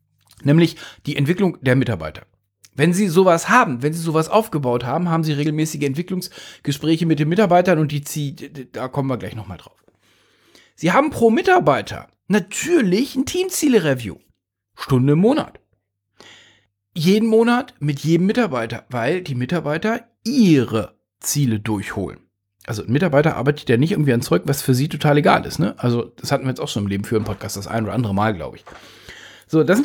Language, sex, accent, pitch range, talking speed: English, male, German, 130-185 Hz, 180 wpm